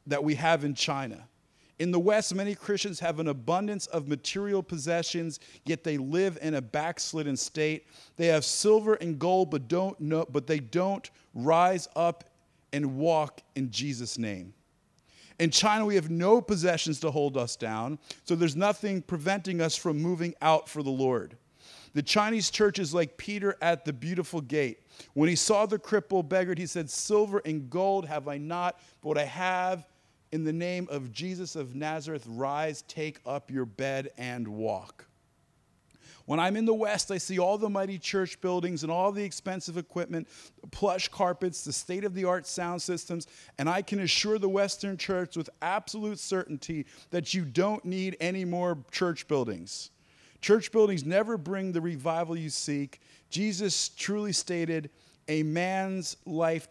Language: English